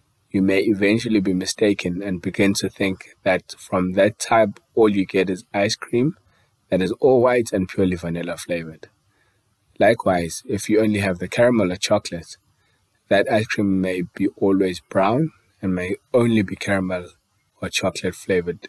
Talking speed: 165 wpm